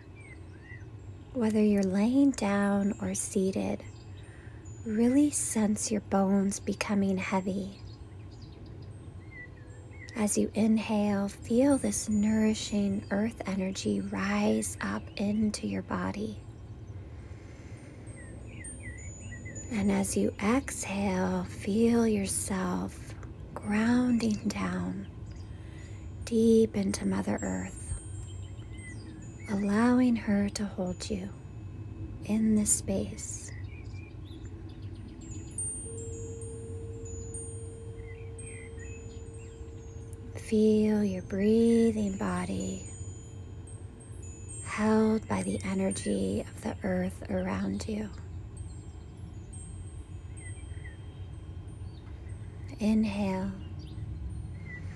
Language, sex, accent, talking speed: English, female, American, 65 wpm